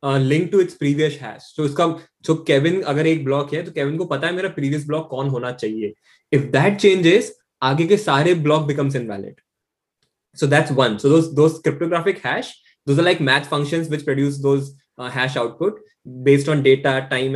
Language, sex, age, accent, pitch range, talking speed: Hindi, male, 20-39, native, 135-165 Hz, 205 wpm